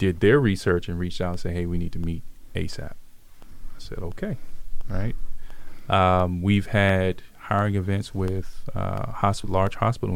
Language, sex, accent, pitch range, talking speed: English, male, American, 95-105 Hz, 165 wpm